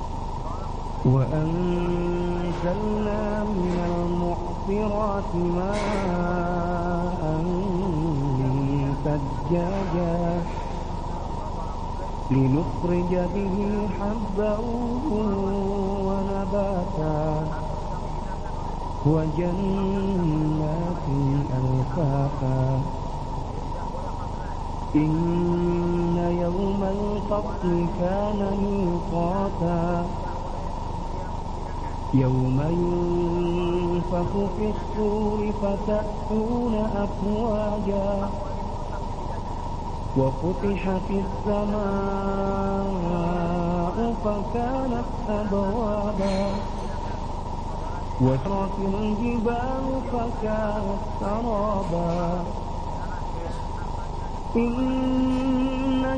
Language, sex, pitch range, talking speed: Indonesian, male, 145-205 Hz, 40 wpm